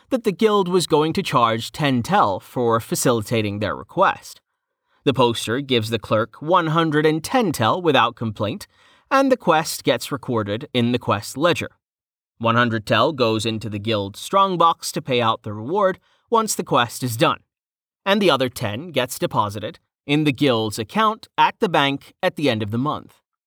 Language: English